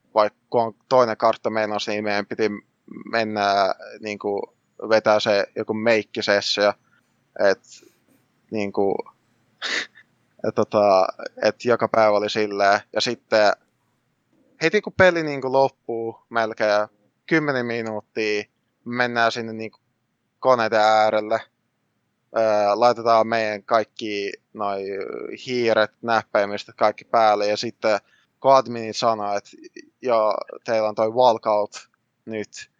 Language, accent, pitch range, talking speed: Finnish, native, 105-120 Hz, 95 wpm